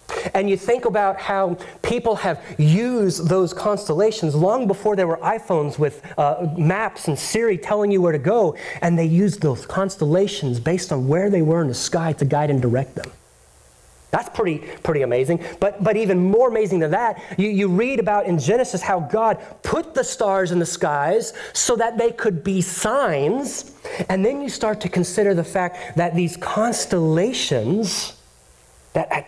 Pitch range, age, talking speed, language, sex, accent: 140-195 Hz, 30-49, 180 wpm, English, male, American